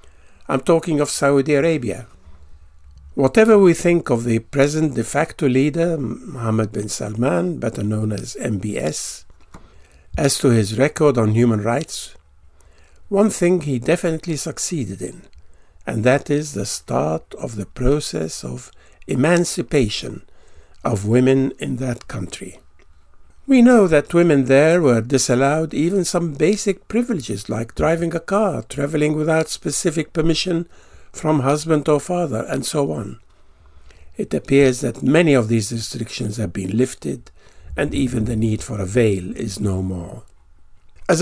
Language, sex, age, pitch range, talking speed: English, male, 60-79, 100-160 Hz, 140 wpm